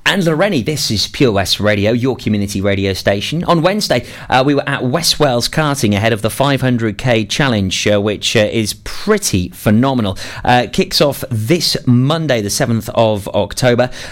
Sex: male